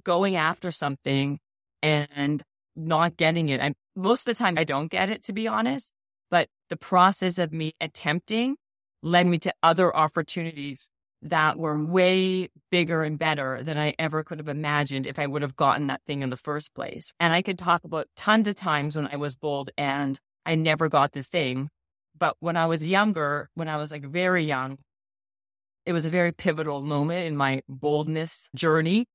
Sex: female